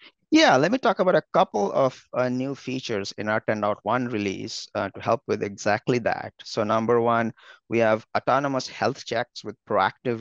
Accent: Indian